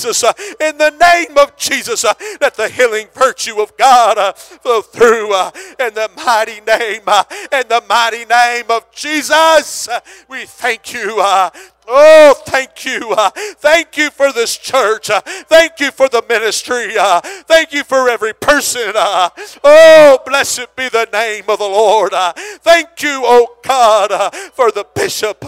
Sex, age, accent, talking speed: male, 50-69, American, 170 wpm